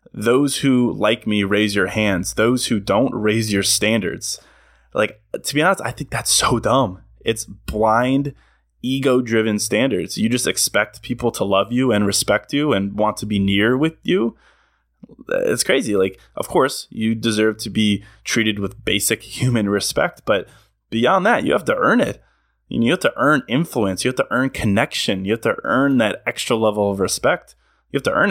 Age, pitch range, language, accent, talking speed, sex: 20-39, 100-120 Hz, English, American, 185 wpm, male